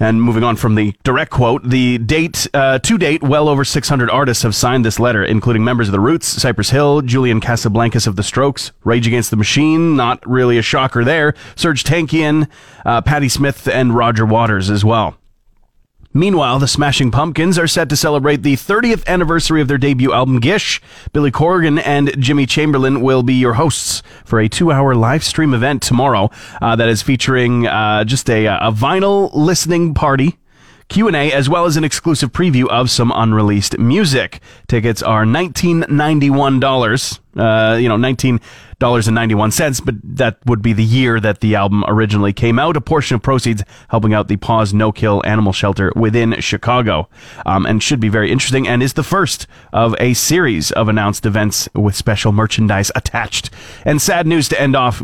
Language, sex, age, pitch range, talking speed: English, male, 30-49, 110-140 Hz, 185 wpm